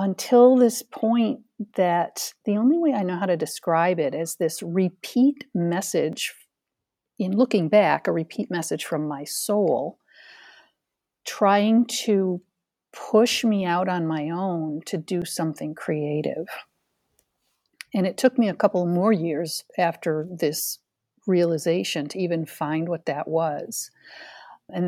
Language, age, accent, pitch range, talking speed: English, 50-69, American, 170-215 Hz, 135 wpm